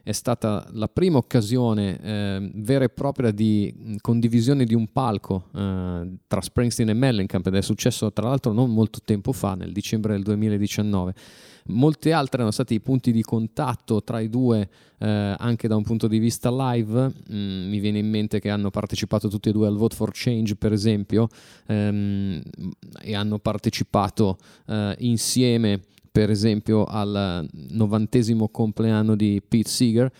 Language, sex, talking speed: Italian, male, 160 wpm